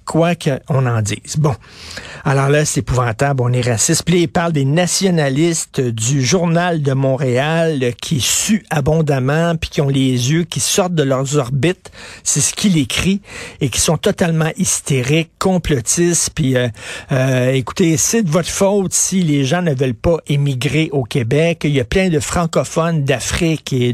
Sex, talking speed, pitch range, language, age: male, 175 wpm, 135-175 Hz, French, 50-69